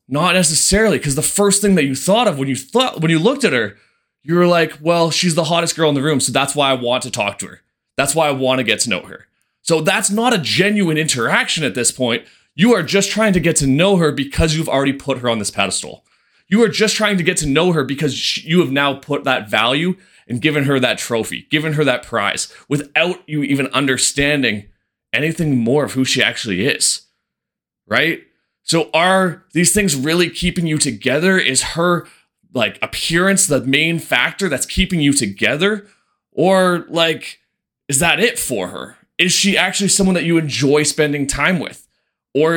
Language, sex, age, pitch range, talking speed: English, male, 20-39, 130-175 Hz, 205 wpm